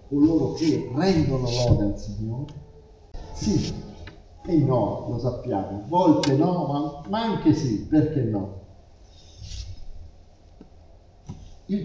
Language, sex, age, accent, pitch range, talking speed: Italian, male, 50-69, native, 100-165 Hz, 105 wpm